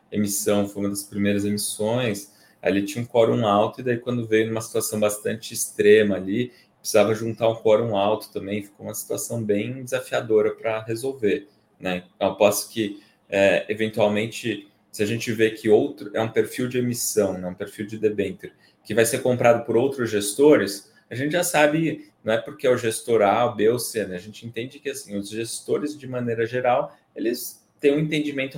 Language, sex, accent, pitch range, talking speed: Portuguese, male, Brazilian, 105-120 Hz, 195 wpm